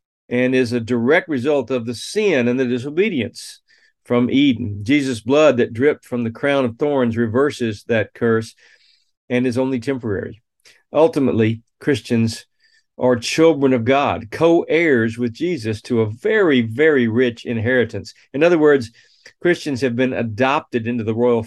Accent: American